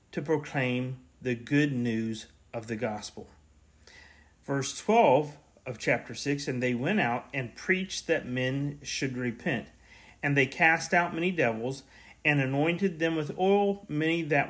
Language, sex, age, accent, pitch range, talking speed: English, male, 40-59, American, 120-165 Hz, 150 wpm